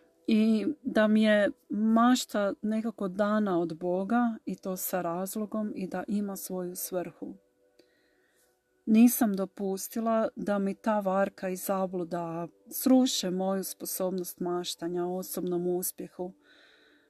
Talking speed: 110 wpm